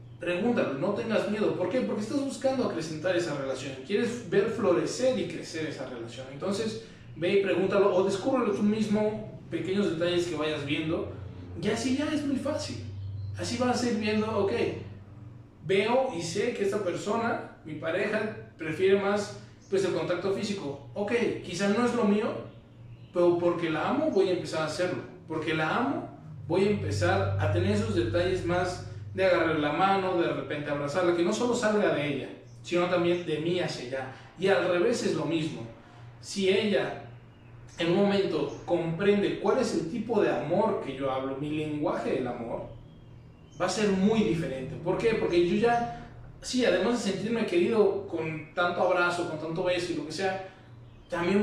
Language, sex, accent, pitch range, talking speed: Spanish, male, Mexican, 140-205 Hz, 180 wpm